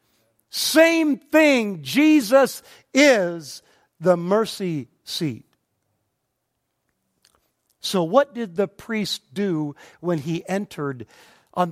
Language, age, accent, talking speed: English, 50-69, American, 85 wpm